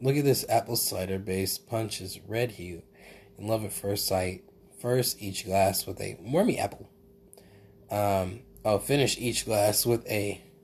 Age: 20-39